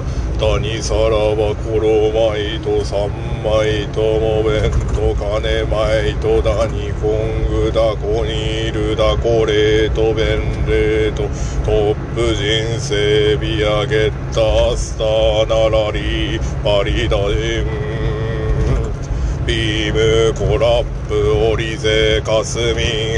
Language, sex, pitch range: Japanese, male, 110-115 Hz